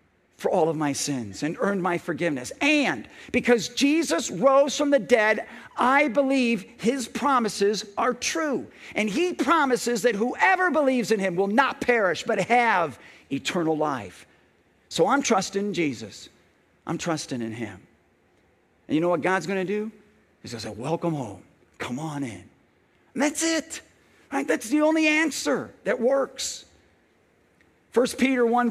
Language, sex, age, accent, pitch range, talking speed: English, male, 50-69, American, 165-265 Hz, 155 wpm